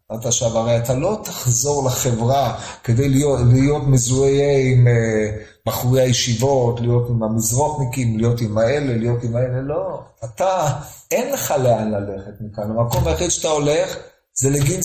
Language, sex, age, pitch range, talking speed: Hebrew, male, 50-69, 120-175 Hz, 150 wpm